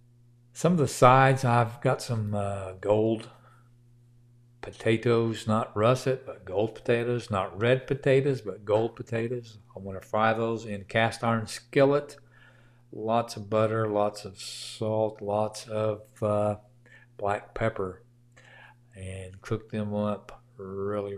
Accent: American